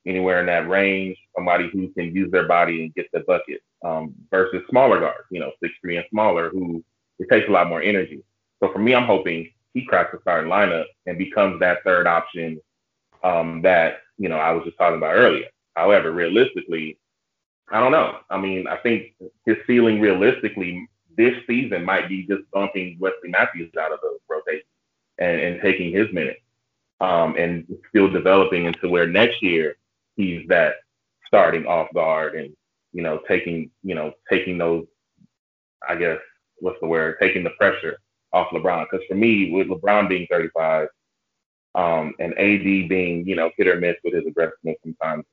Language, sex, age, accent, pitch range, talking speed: English, male, 30-49, American, 85-95 Hz, 180 wpm